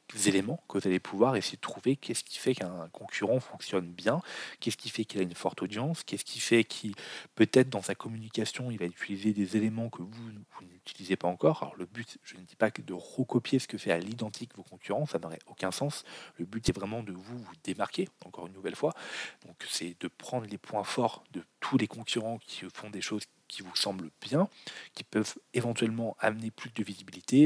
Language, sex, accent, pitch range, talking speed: French, male, French, 100-120 Hz, 220 wpm